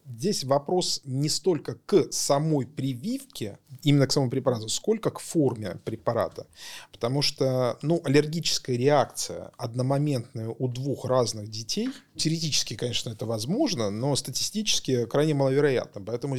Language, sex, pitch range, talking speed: Russian, male, 120-160 Hz, 125 wpm